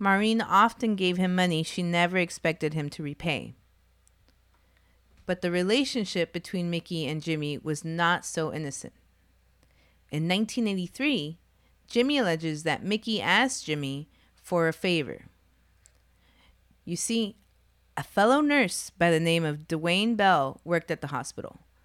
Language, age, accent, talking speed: English, 30-49, American, 130 wpm